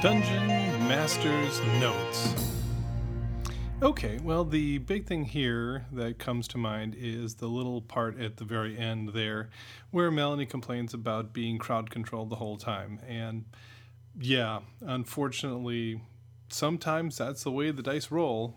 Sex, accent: male, American